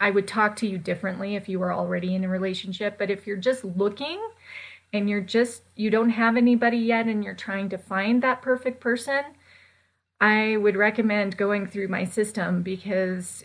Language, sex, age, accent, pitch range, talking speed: English, female, 30-49, American, 190-220 Hz, 185 wpm